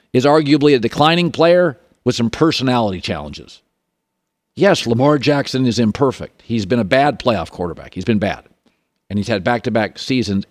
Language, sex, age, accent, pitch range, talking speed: English, male, 50-69, American, 120-170 Hz, 160 wpm